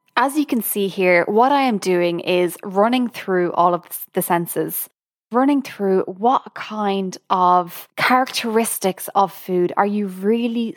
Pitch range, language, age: 180-225 Hz, English, 20-39